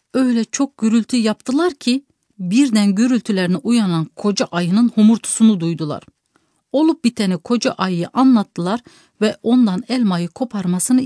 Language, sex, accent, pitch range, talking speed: English, female, Turkish, 185-255 Hz, 115 wpm